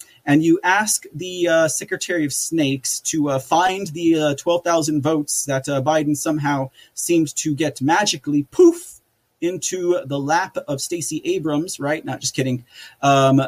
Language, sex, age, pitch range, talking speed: English, male, 30-49, 140-175 Hz, 160 wpm